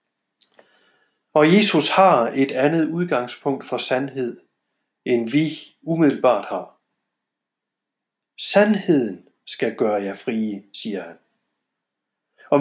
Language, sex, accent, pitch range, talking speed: Danish, male, native, 140-190 Hz, 95 wpm